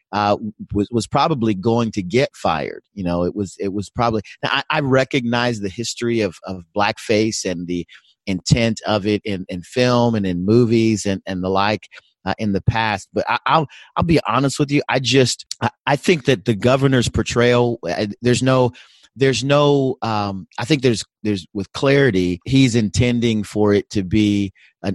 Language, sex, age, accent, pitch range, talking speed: English, male, 30-49, American, 100-120 Hz, 190 wpm